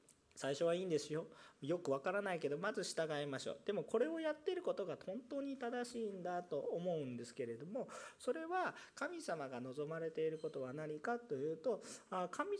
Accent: native